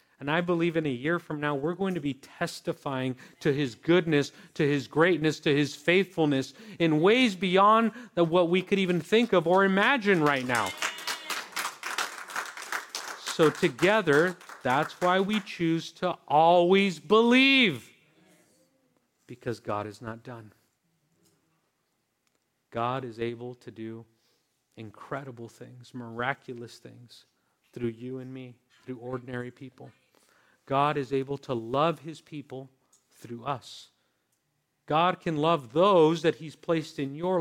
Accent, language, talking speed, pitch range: American, English, 135 wpm, 125-170 Hz